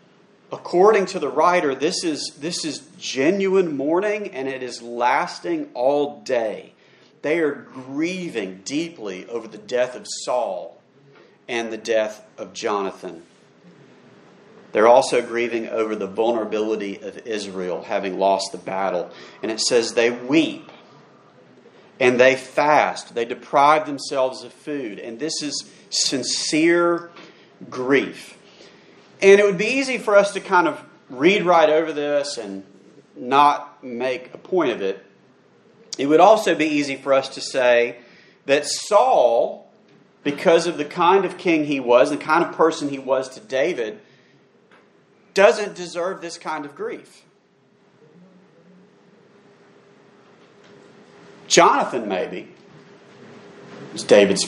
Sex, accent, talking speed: male, American, 130 wpm